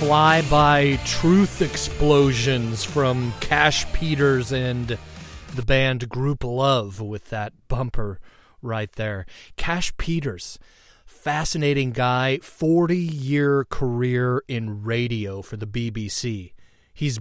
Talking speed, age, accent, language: 100 wpm, 30-49, American, English